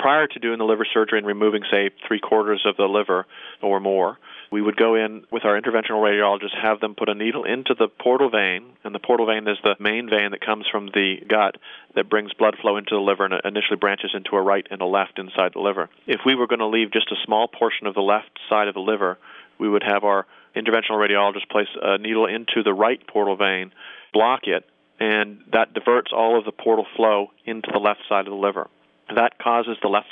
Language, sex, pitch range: English, male, 100-110 Hz